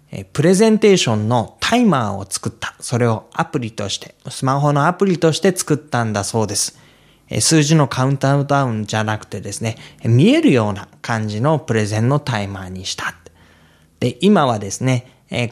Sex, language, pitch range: male, Japanese, 110-155 Hz